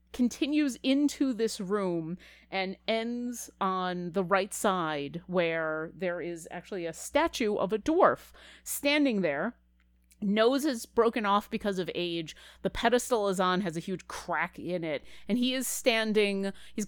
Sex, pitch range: female, 175-225 Hz